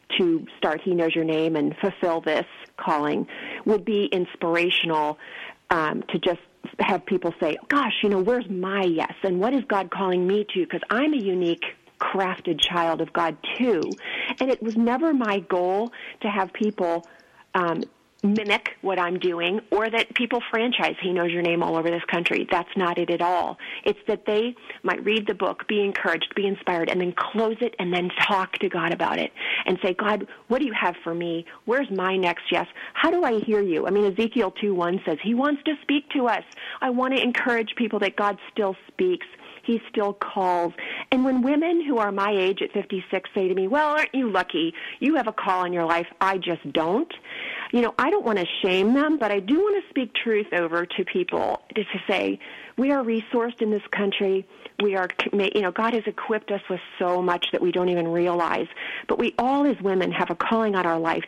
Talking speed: 210 wpm